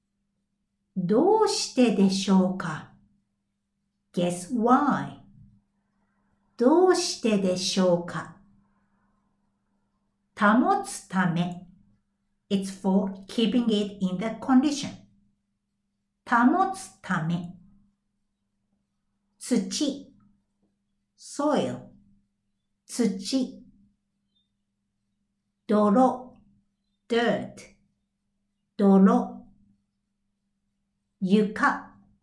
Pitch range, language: 175-230 Hz, Japanese